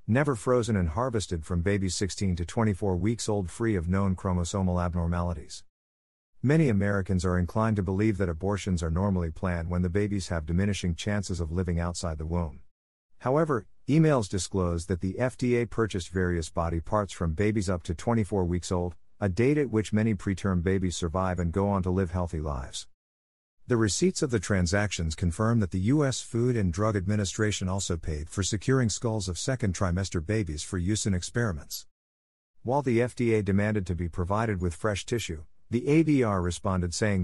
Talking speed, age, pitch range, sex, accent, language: 175 wpm, 50-69, 85-110 Hz, male, American, English